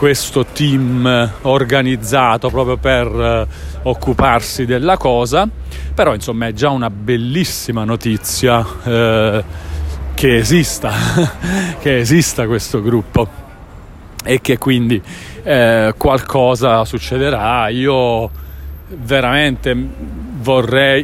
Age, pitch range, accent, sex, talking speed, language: 30-49, 115-135 Hz, native, male, 90 wpm, Italian